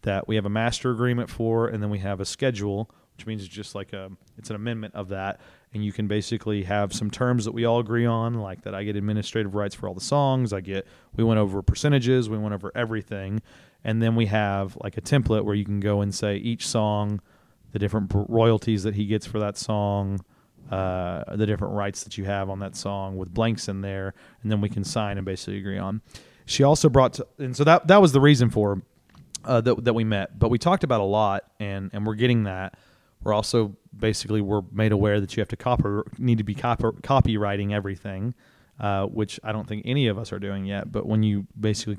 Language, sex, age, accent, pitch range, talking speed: English, male, 30-49, American, 100-115 Hz, 235 wpm